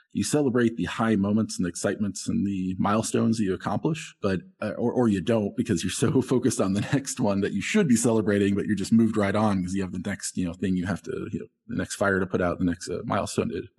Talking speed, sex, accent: 270 wpm, male, American